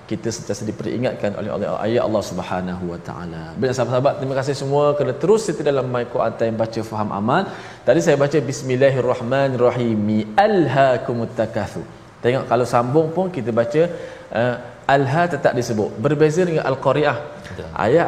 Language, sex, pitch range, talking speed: Malayalam, male, 115-145 Hz, 165 wpm